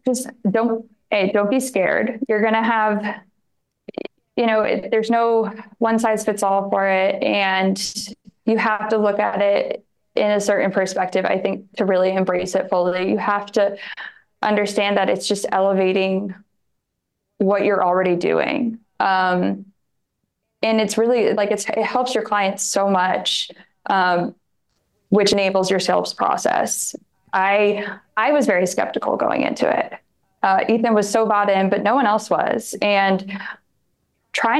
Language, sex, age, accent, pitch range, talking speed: English, female, 20-39, American, 190-220 Hz, 155 wpm